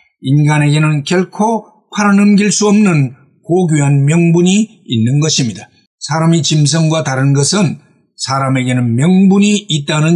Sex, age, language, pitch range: male, 50-69, Korean, 140-185 Hz